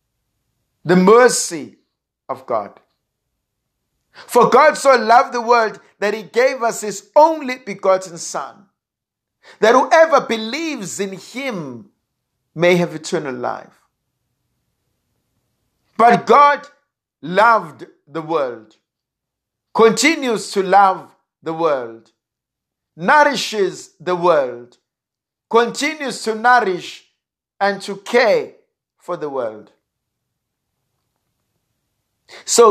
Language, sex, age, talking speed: English, male, 60-79, 90 wpm